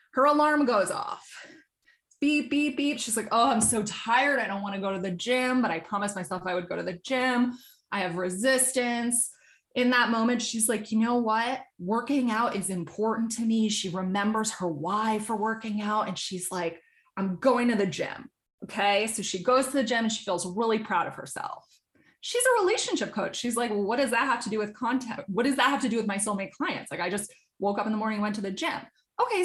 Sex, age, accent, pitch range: female, 20-39, American, 200-250 Hz